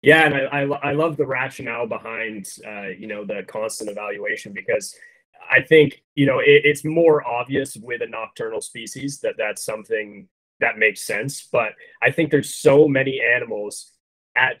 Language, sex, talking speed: English, male, 175 wpm